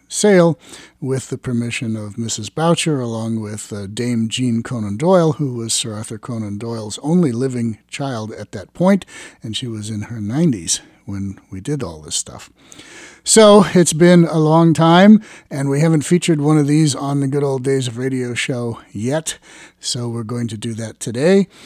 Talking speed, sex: 185 wpm, male